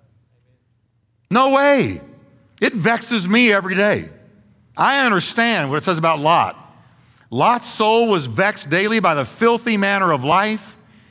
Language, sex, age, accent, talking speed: English, male, 50-69, American, 135 wpm